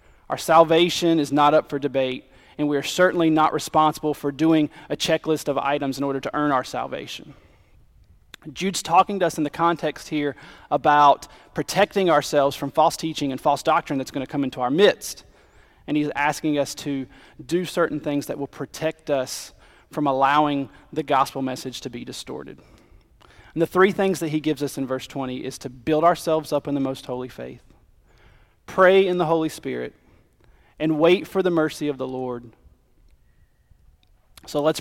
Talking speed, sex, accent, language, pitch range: 180 wpm, male, American, English, 130-160 Hz